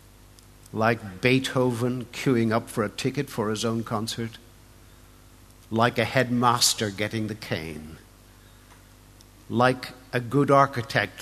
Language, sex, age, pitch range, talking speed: English, male, 60-79, 110-125 Hz, 110 wpm